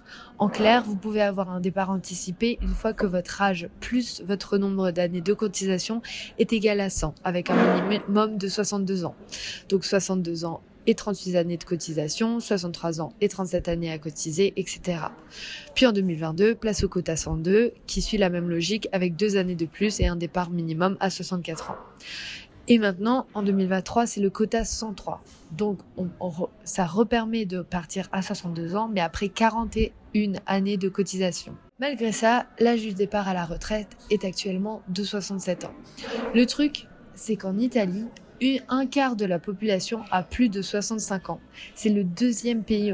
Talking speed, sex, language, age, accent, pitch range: 170 wpm, female, French, 20-39, French, 185-220 Hz